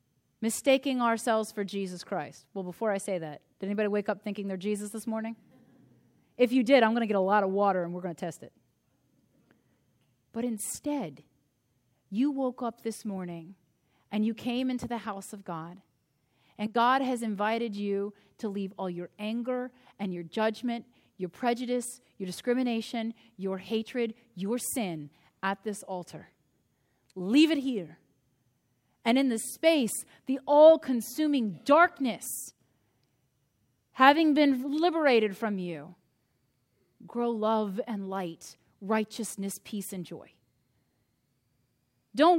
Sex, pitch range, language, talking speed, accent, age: female, 170-235 Hz, English, 140 wpm, American, 30-49